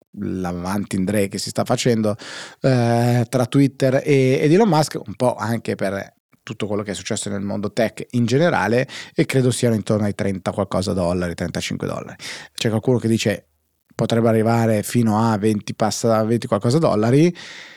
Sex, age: male, 30-49